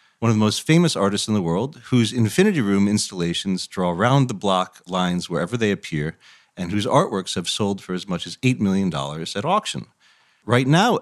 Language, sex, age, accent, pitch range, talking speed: English, male, 40-59, American, 100-130 Hz, 185 wpm